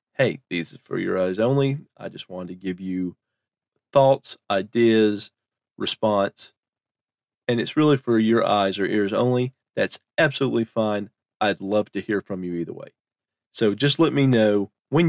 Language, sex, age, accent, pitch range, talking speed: English, male, 40-59, American, 105-130 Hz, 165 wpm